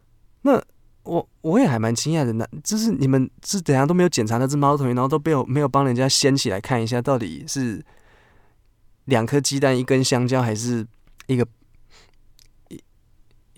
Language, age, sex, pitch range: Chinese, 20-39, male, 110-145 Hz